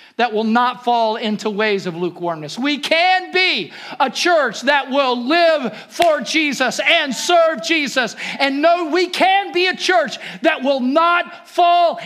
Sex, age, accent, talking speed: male, 50-69, American, 160 wpm